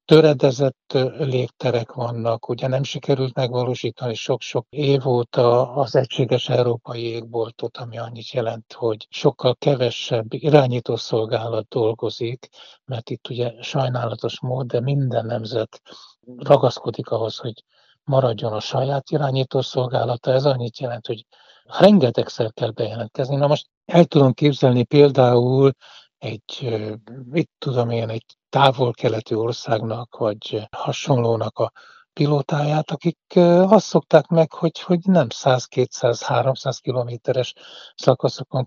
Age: 60-79